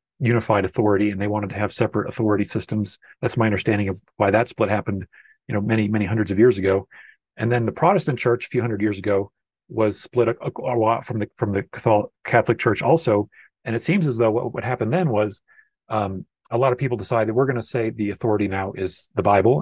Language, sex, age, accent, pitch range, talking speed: English, male, 40-59, American, 105-120 Hz, 230 wpm